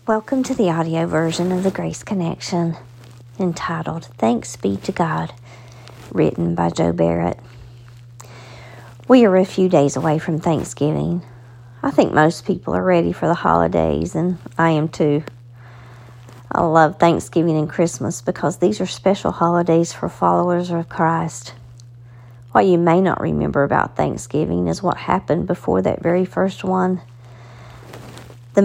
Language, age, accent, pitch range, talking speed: English, 50-69, American, 120-180 Hz, 145 wpm